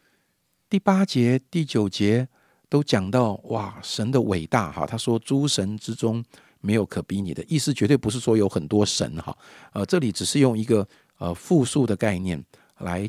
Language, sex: Chinese, male